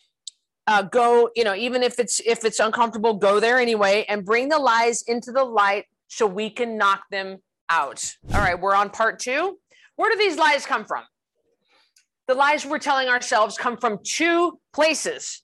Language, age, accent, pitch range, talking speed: English, 40-59, American, 215-275 Hz, 185 wpm